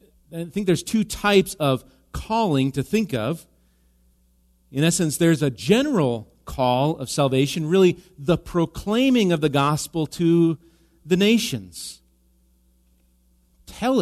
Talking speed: 120 wpm